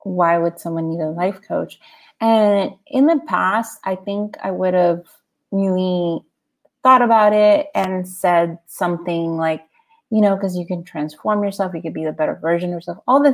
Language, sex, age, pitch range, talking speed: English, female, 30-49, 175-220 Hz, 185 wpm